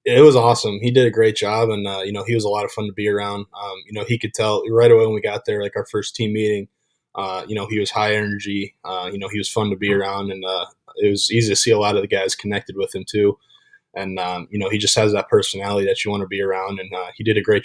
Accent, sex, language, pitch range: American, male, English, 100-115 Hz